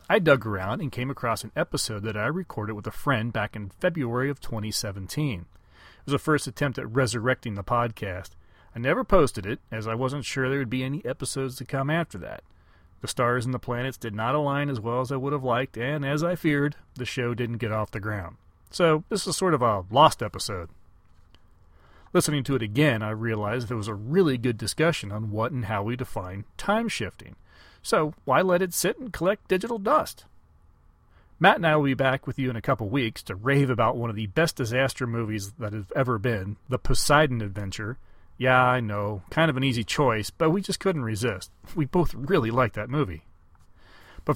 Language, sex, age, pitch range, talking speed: English, male, 40-59, 110-145 Hz, 210 wpm